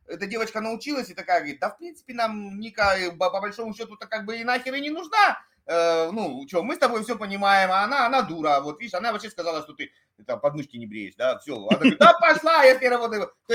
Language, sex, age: Russian, male, 30-49